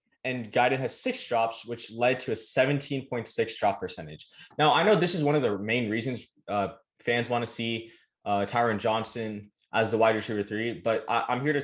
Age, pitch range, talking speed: 20-39, 100-120 Hz, 205 wpm